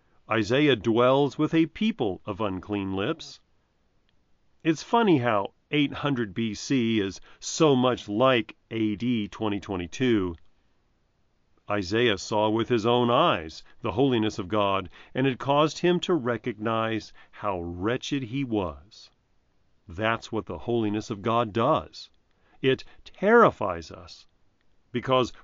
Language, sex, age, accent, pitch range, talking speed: English, male, 40-59, American, 100-140 Hz, 120 wpm